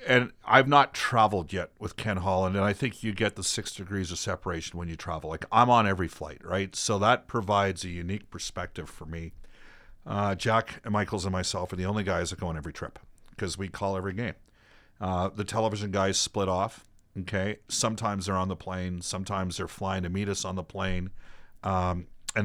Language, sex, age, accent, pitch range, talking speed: English, male, 50-69, American, 90-105 Hz, 210 wpm